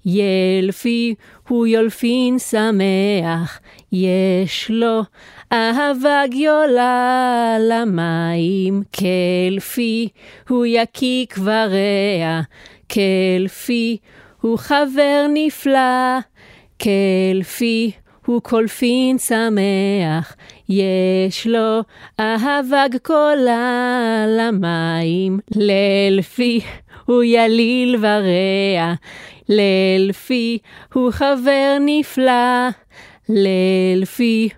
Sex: female